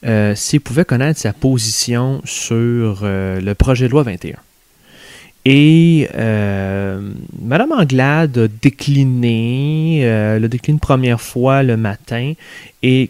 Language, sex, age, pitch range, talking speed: French, male, 30-49, 110-140 Hz, 130 wpm